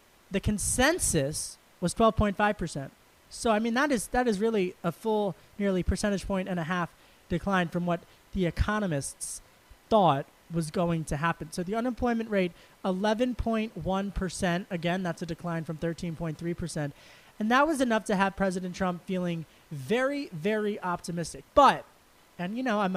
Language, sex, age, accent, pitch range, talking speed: English, male, 30-49, American, 165-210 Hz, 150 wpm